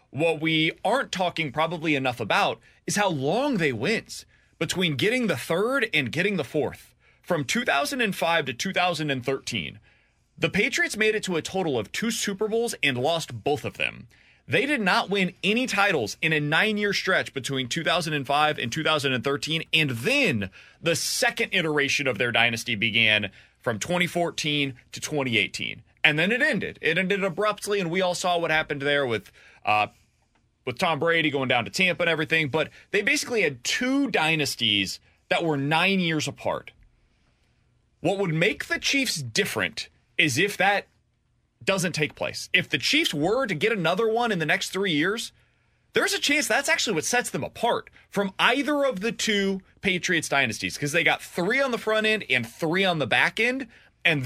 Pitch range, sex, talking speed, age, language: 145-200 Hz, male, 175 wpm, 30-49, English